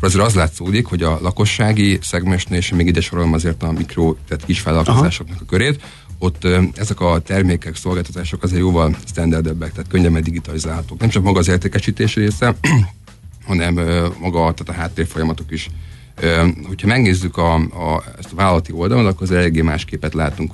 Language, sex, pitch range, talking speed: Hungarian, male, 80-95 Hz, 165 wpm